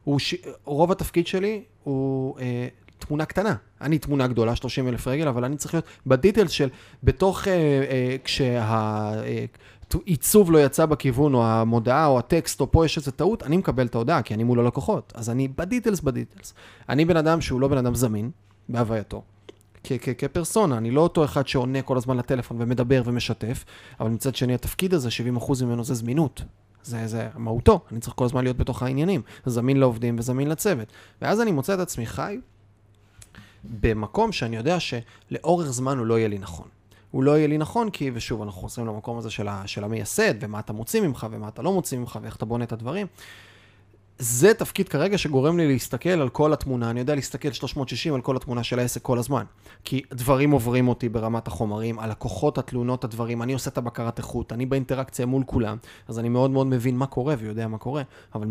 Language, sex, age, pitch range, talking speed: Hebrew, male, 30-49, 115-145 Hz, 190 wpm